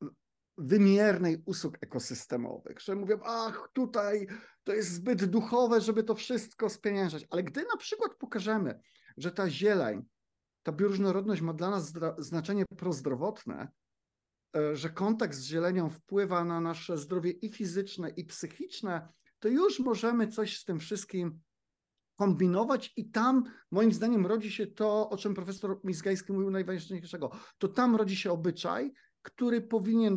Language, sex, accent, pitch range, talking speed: Polish, male, native, 175-225 Hz, 140 wpm